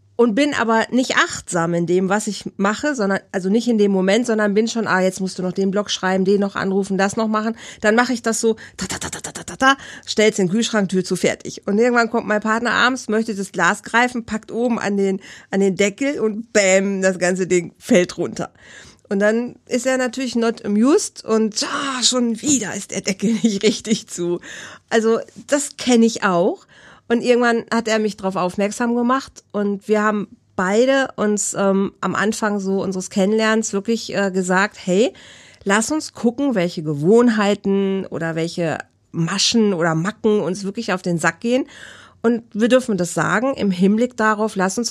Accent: German